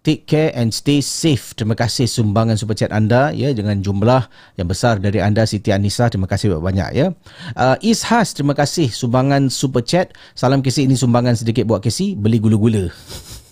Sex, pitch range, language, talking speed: male, 110-145 Hz, Malay, 180 wpm